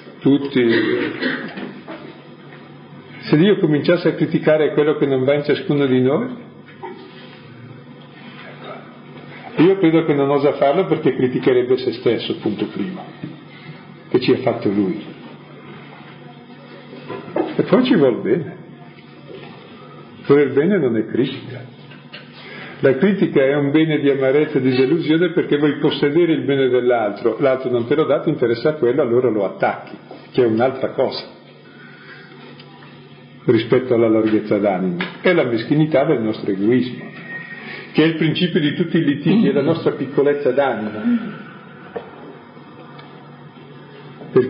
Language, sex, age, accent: Italian, male, 50-69, native